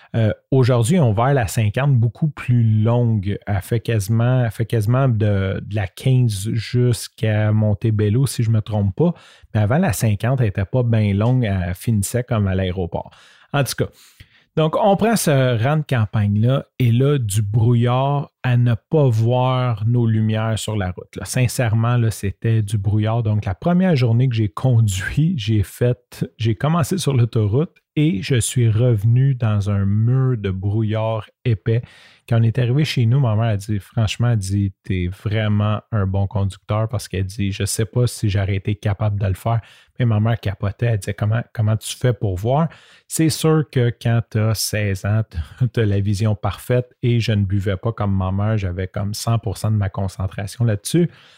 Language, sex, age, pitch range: French, male, 30-49, 105-125 Hz